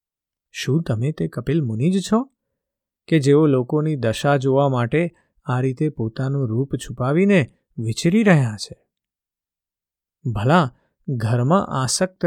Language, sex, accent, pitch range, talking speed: Gujarati, male, native, 125-170 Hz, 65 wpm